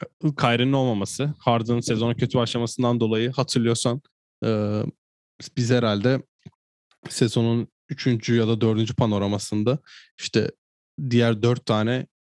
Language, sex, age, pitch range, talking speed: Turkish, male, 20-39, 105-120 Hz, 105 wpm